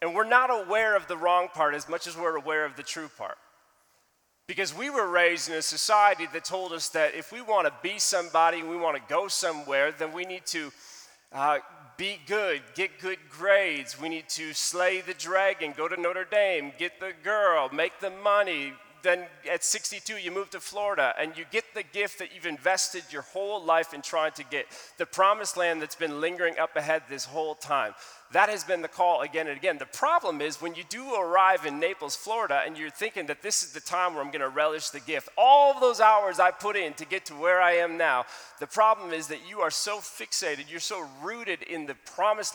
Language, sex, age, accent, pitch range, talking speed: English, male, 30-49, American, 155-200 Hz, 220 wpm